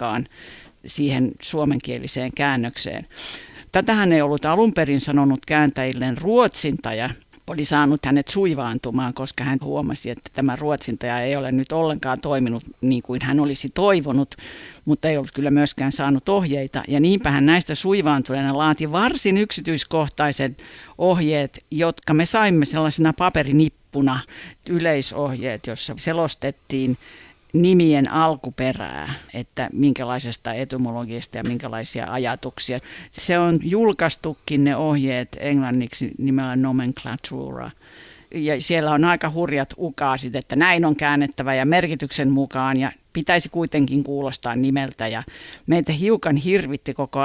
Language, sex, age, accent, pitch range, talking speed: Finnish, female, 50-69, native, 130-155 Hz, 120 wpm